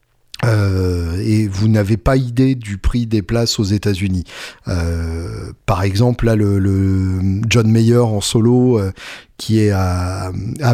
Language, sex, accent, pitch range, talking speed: French, male, French, 100-125 Hz, 150 wpm